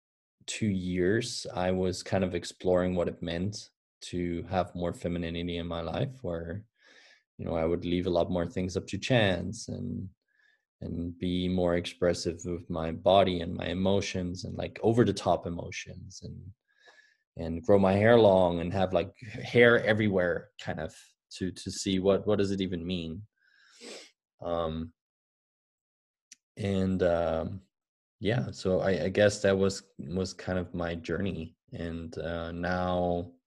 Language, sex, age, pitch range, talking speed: English, male, 20-39, 85-100 Hz, 150 wpm